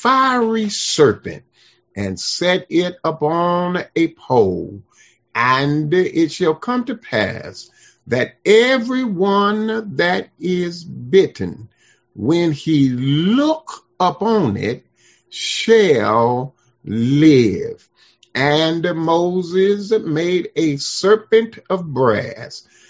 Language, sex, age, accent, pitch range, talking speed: English, male, 50-69, American, 130-205 Hz, 90 wpm